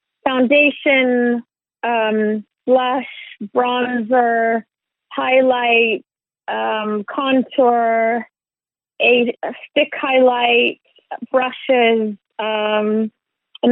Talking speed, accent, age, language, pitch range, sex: 55 wpm, American, 30-49, Swedish, 220-260 Hz, female